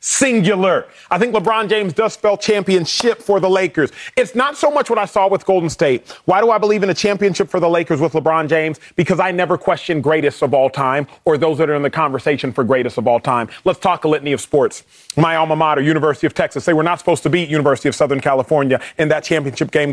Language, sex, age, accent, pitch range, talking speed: English, male, 30-49, American, 155-205 Hz, 240 wpm